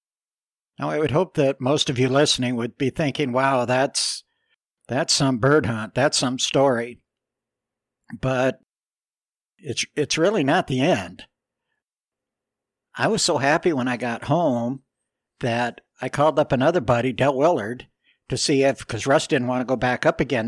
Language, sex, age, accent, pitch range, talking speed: English, male, 60-79, American, 120-140 Hz, 165 wpm